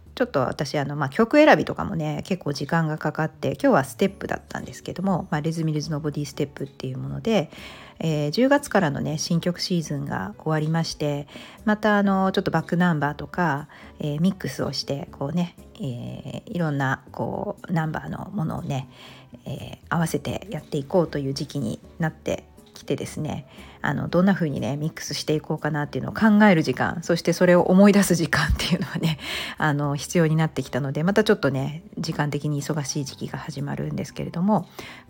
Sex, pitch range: female, 145-195 Hz